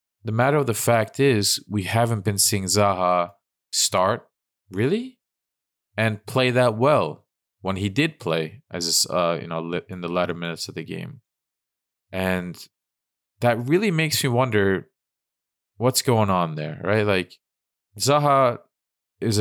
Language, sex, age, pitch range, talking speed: English, male, 20-39, 85-110 Hz, 140 wpm